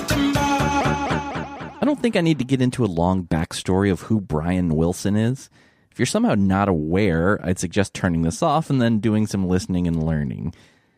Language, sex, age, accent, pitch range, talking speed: English, male, 30-49, American, 90-120 Hz, 180 wpm